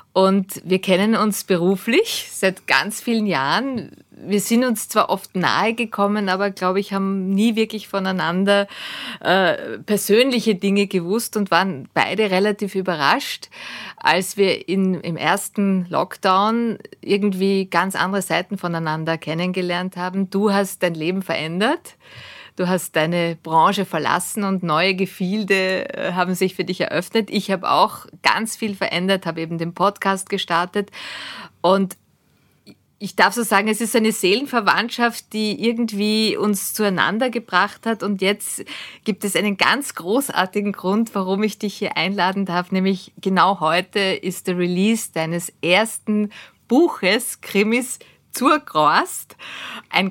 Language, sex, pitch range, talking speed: German, female, 185-215 Hz, 140 wpm